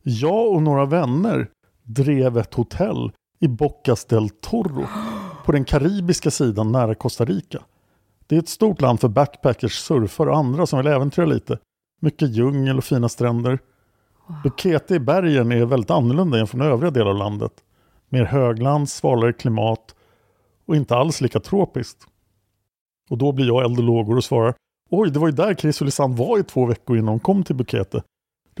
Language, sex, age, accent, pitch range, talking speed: Swedish, male, 50-69, Norwegian, 115-155 Hz, 170 wpm